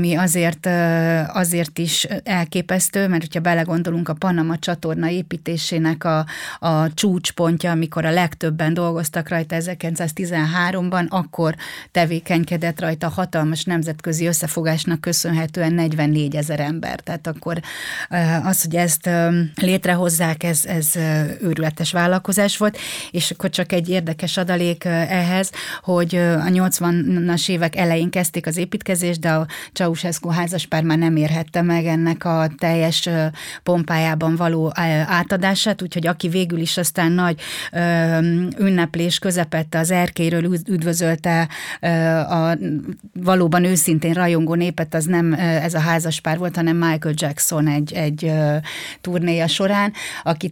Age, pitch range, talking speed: 30-49, 160-175 Hz, 120 wpm